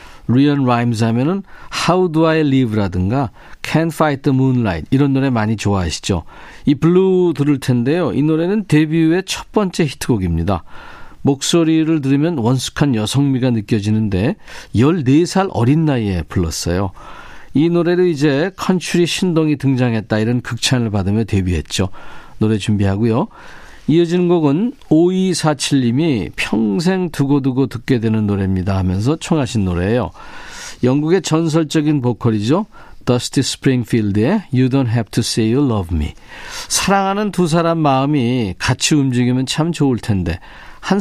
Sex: male